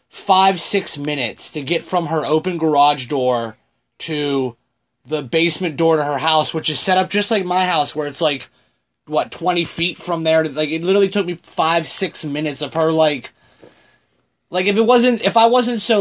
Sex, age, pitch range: male, 30-49, 150-195 Hz